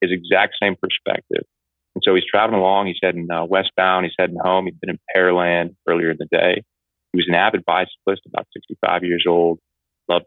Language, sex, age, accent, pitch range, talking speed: English, male, 30-49, American, 80-95 Hz, 200 wpm